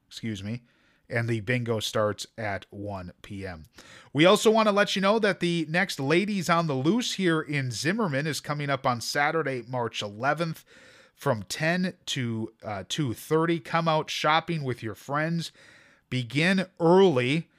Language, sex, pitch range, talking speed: English, male, 120-160 Hz, 155 wpm